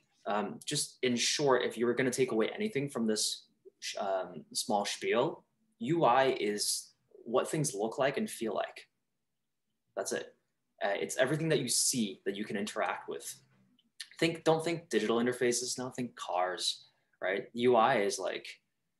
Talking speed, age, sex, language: 165 wpm, 20-39, male, English